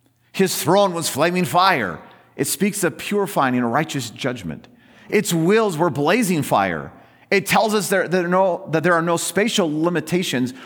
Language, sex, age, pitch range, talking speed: English, male, 40-59, 130-185 Hz, 150 wpm